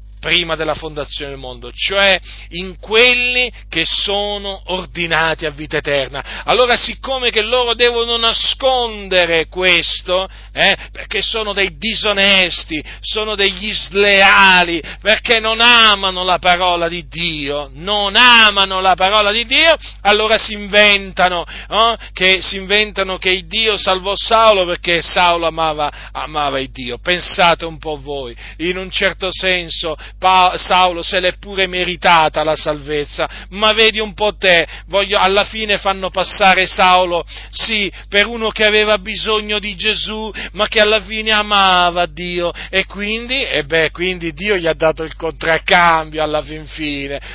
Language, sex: Italian, male